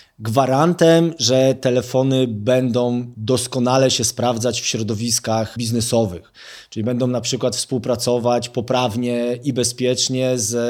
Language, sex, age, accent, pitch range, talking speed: Polish, male, 20-39, native, 115-130 Hz, 105 wpm